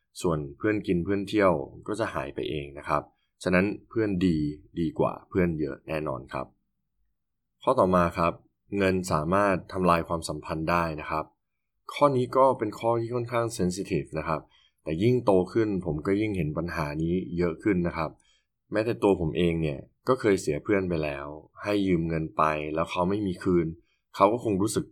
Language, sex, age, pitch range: Thai, male, 20-39, 80-100 Hz